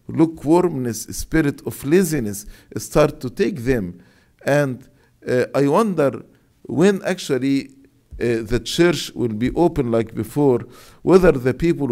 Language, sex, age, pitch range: English, male, 50-69, 115-160 Hz